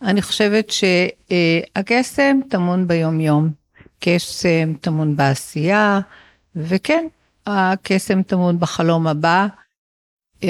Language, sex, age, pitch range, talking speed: Hebrew, female, 50-69, 165-205 Hz, 75 wpm